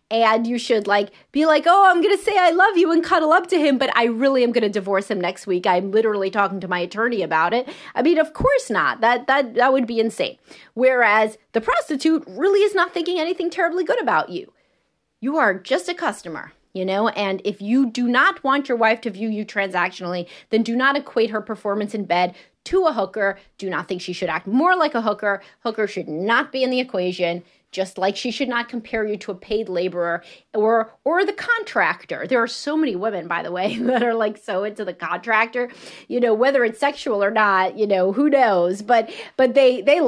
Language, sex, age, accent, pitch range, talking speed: English, female, 30-49, American, 210-315 Hz, 230 wpm